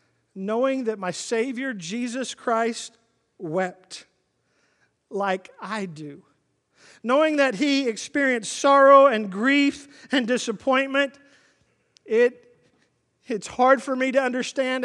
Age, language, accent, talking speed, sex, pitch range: 50-69, English, American, 105 wpm, male, 205-265 Hz